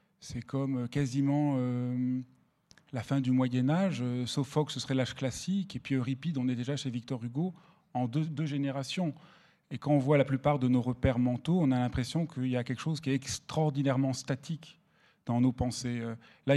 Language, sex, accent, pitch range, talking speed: French, male, French, 130-150 Hz, 195 wpm